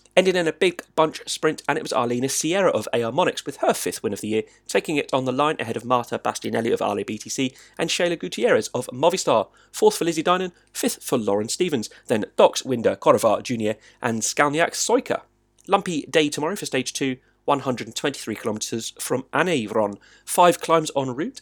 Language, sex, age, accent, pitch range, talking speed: English, male, 30-49, British, 120-180 Hz, 190 wpm